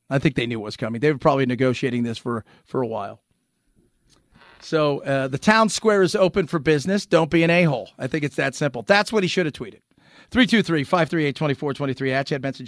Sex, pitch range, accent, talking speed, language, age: male, 140-210 Hz, American, 210 wpm, English, 40-59